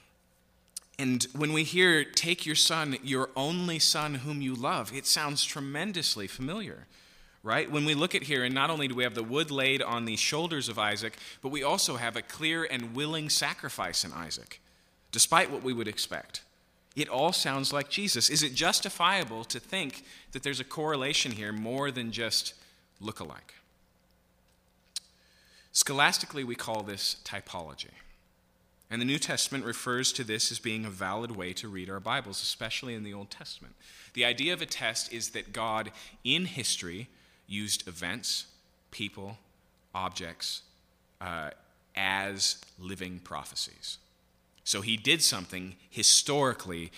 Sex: male